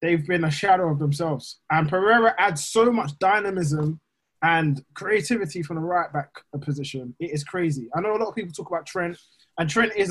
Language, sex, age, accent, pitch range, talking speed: English, male, 20-39, British, 145-180 Hz, 200 wpm